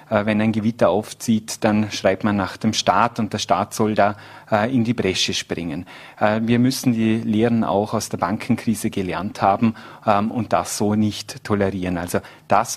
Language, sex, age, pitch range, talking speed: German, male, 30-49, 105-120 Hz, 170 wpm